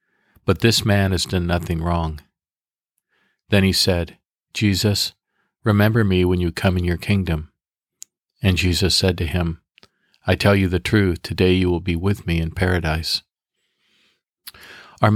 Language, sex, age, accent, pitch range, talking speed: English, male, 50-69, American, 85-110 Hz, 150 wpm